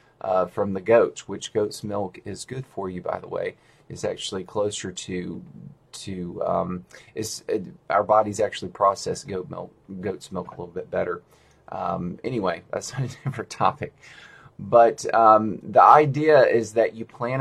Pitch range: 100-130 Hz